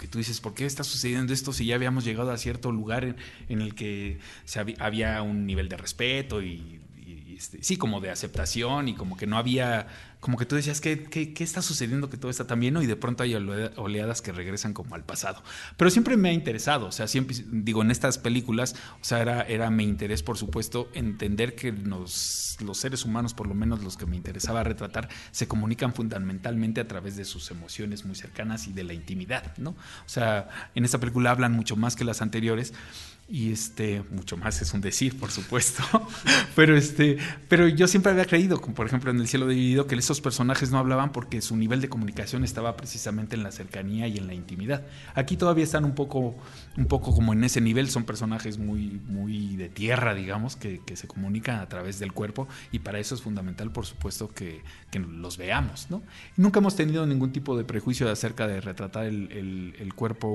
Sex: male